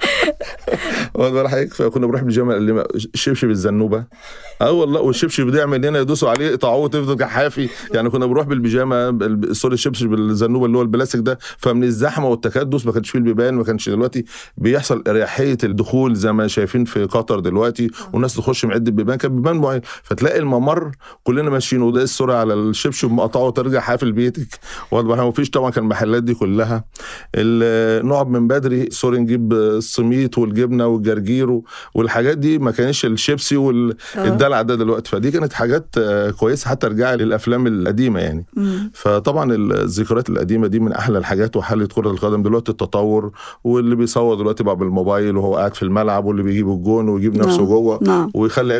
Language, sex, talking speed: Arabic, male, 160 wpm